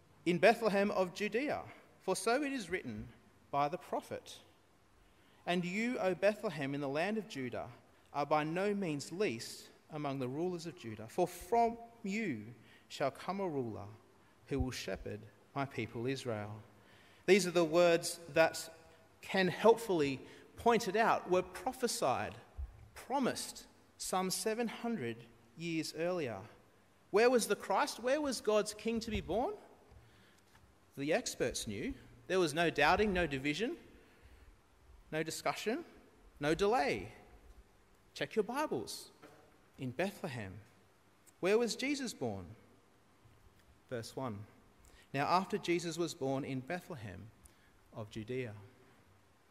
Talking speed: 125 wpm